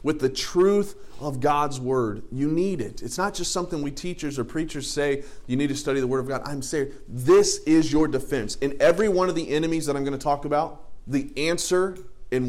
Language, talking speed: English, 225 wpm